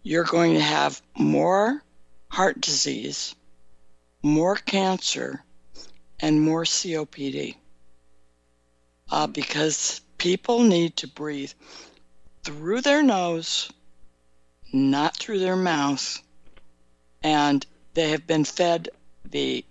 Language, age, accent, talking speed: English, 60-79, American, 95 wpm